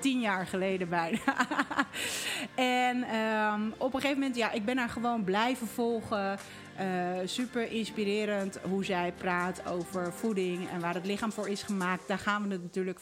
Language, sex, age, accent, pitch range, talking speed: Dutch, female, 40-59, Dutch, 185-230 Hz, 165 wpm